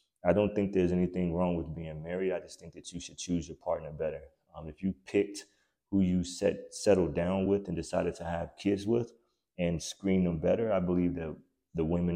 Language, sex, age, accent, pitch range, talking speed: English, male, 20-39, American, 80-95 Hz, 215 wpm